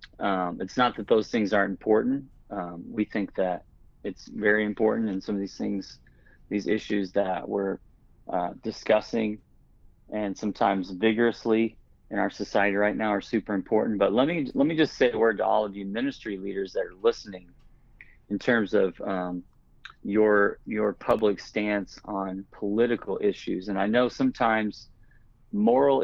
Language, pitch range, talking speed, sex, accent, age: English, 100-115 Hz, 165 wpm, male, American, 30-49